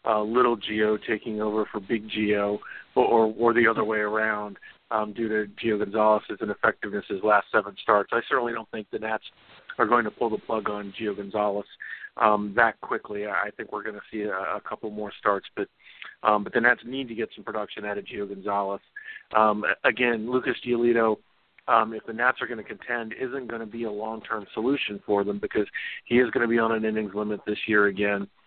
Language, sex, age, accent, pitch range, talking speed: English, male, 40-59, American, 105-115 Hz, 215 wpm